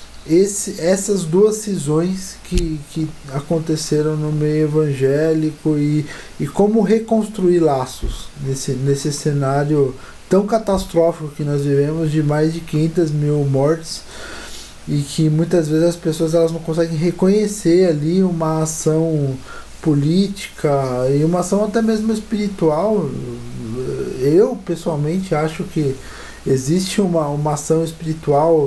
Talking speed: 115 wpm